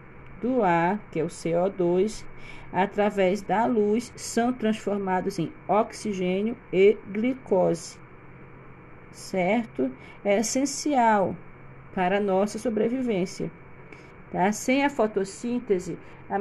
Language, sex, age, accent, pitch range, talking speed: Portuguese, female, 40-59, Brazilian, 190-230 Hz, 100 wpm